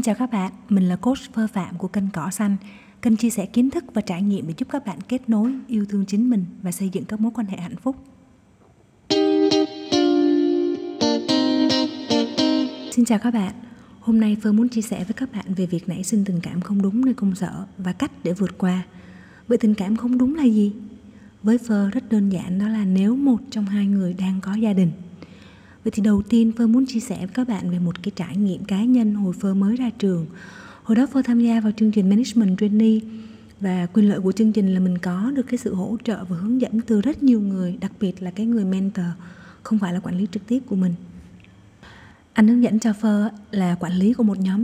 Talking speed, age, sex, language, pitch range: 230 wpm, 20-39, female, Vietnamese, 185-225 Hz